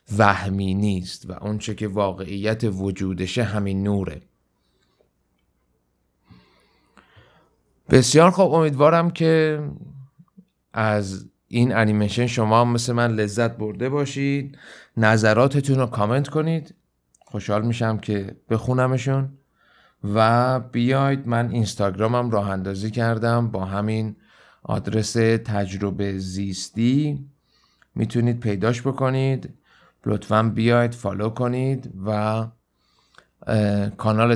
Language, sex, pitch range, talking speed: Persian, male, 100-120 Hz, 90 wpm